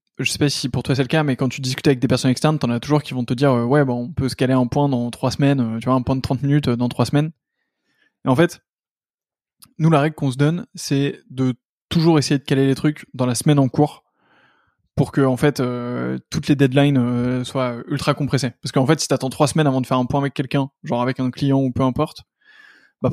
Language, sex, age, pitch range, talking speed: French, male, 20-39, 125-150 Hz, 280 wpm